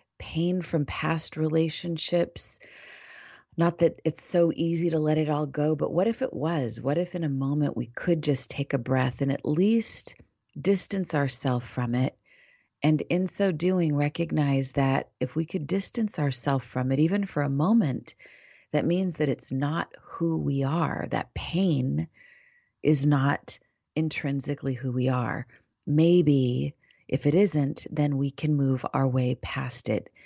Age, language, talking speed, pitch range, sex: 30-49, English, 165 wpm, 130-170 Hz, female